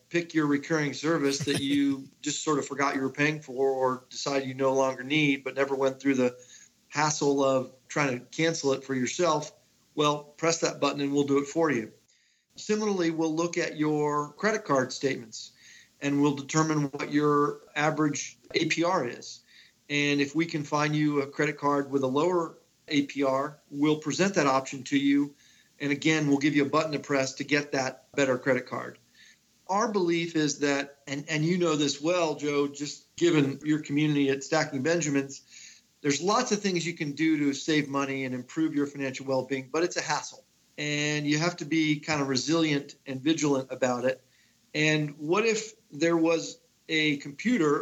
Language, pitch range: English, 140-155 Hz